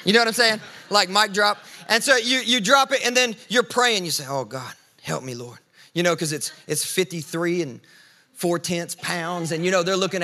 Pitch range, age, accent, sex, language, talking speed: 160-230 Hz, 30-49, American, male, English, 230 wpm